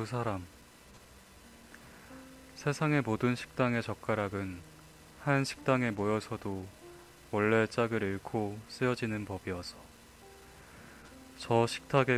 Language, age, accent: Korean, 20-39, native